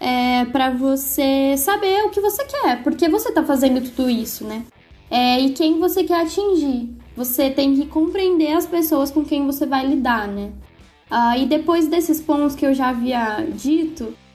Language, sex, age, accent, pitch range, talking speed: Portuguese, female, 10-29, Brazilian, 245-315 Hz, 180 wpm